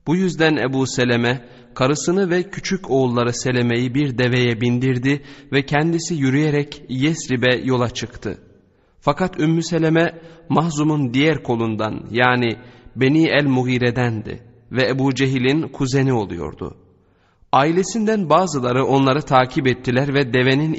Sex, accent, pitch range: male, native, 125-155 Hz